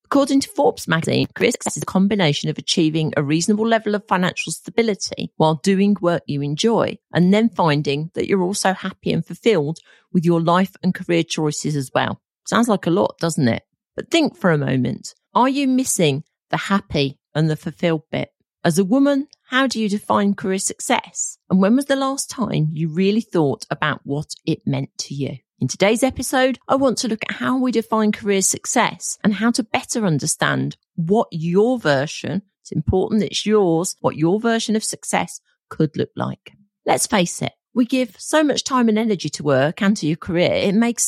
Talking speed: 195 wpm